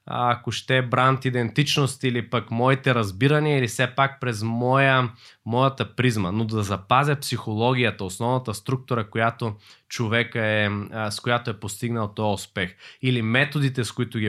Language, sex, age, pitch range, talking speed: Bulgarian, male, 20-39, 110-140 Hz, 150 wpm